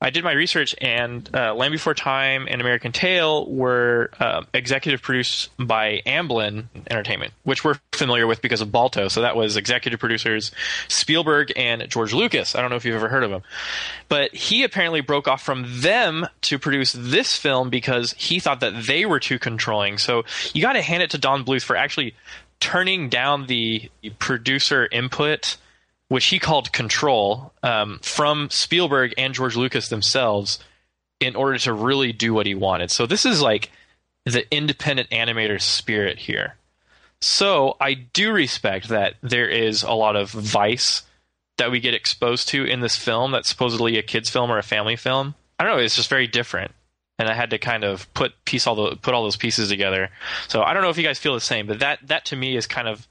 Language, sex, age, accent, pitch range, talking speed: English, male, 20-39, American, 110-135 Hz, 200 wpm